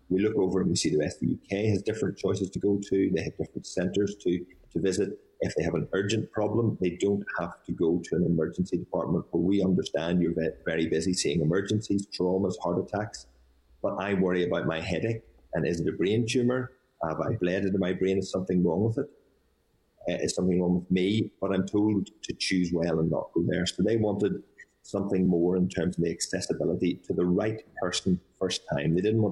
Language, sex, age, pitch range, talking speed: English, male, 30-49, 85-100 Hz, 220 wpm